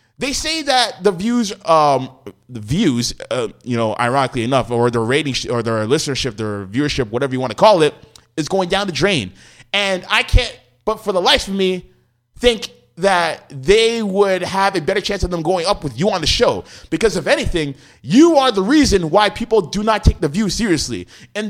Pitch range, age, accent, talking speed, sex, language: 145-210 Hz, 20-39, American, 205 wpm, male, English